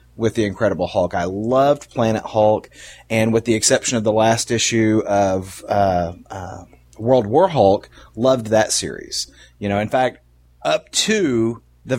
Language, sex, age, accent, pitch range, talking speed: English, male, 30-49, American, 95-125 Hz, 160 wpm